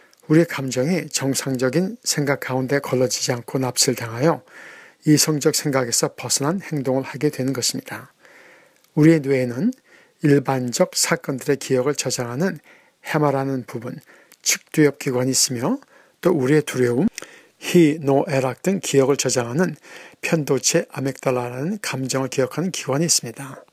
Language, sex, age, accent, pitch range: Korean, male, 60-79, native, 130-165 Hz